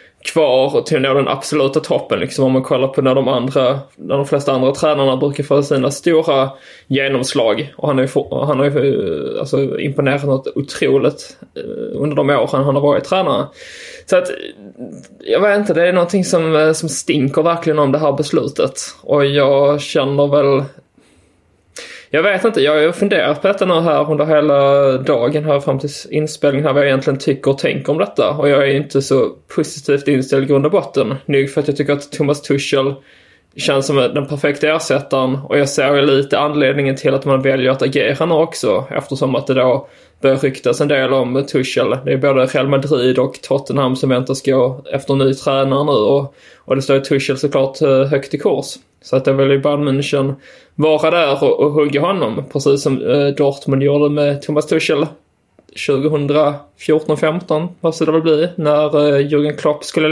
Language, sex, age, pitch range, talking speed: Swedish, male, 20-39, 135-155 Hz, 185 wpm